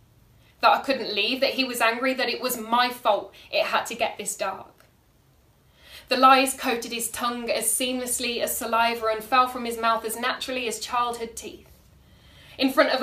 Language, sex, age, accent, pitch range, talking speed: English, female, 10-29, British, 225-265 Hz, 190 wpm